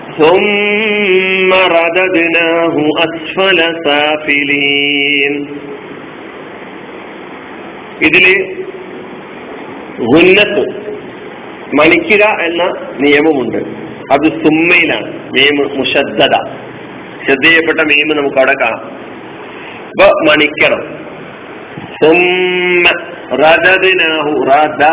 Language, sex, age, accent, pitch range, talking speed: Malayalam, male, 50-69, native, 145-170 Hz, 40 wpm